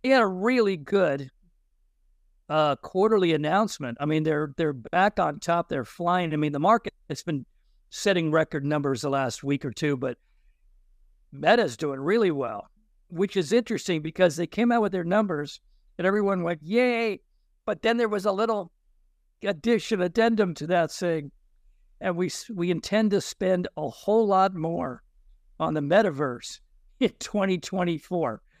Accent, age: American, 60-79